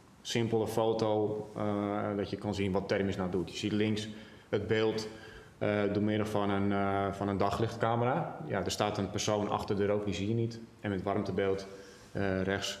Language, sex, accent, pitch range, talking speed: Dutch, male, Dutch, 100-115 Hz, 195 wpm